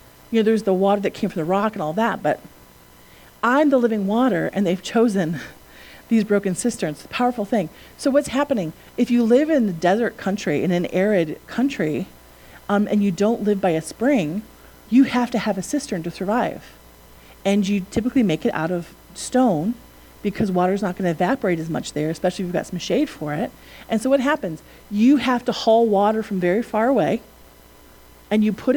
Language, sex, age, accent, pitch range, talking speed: English, female, 40-59, American, 160-230 Hz, 205 wpm